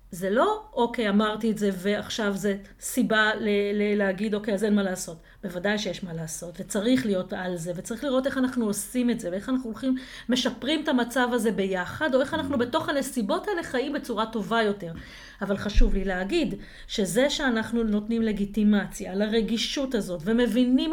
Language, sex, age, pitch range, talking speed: Hebrew, female, 40-59, 200-285 Hz, 175 wpm